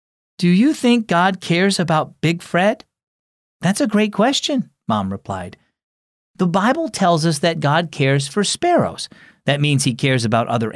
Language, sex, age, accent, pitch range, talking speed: English, male, 40-59, American, 110-175 Hz, 160 wpm